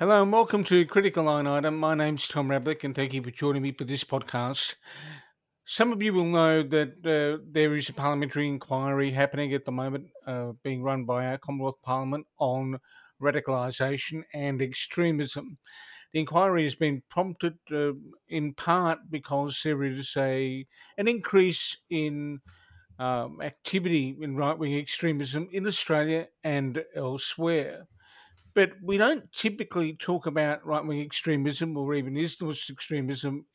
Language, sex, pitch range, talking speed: English, male, 140-160 Hz, 150 wpm